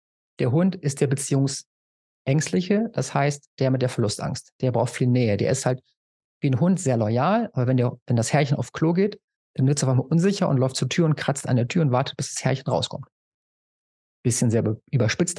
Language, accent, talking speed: German, German, 220 wpm